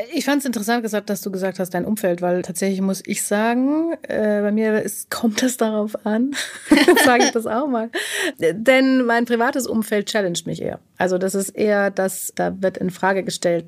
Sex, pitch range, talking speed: female, 180-220 Hz, 200 wpm